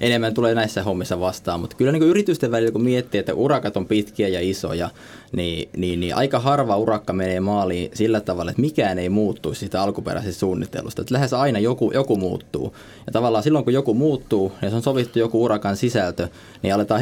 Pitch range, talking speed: 95-125 Hz, 200 wpm